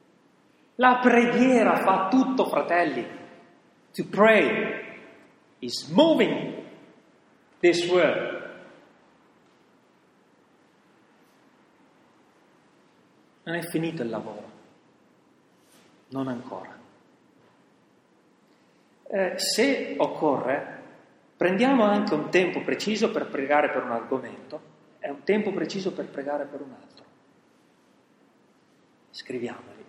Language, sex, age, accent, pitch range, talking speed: Italian, male, 40-59, native, 140-215 Hz, 80 wpm